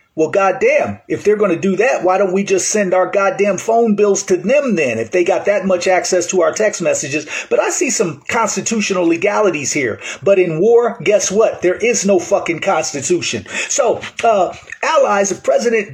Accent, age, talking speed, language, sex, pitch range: American, 40-59, 195 wpm, English, male, 185-245 Hz